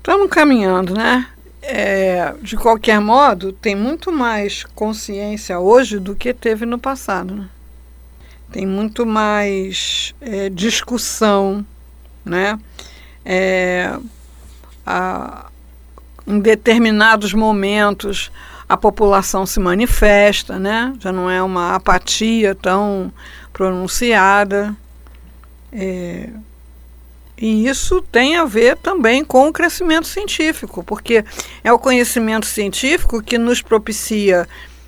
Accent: Brazilian